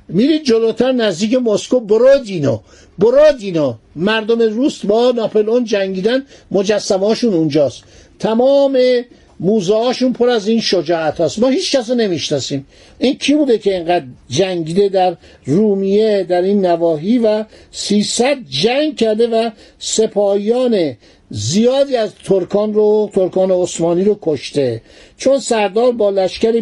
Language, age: Persian, 60-79